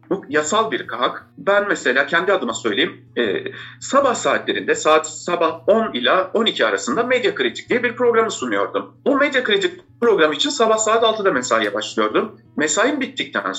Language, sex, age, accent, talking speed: Turkish, male, 50-69, native, 160 wpm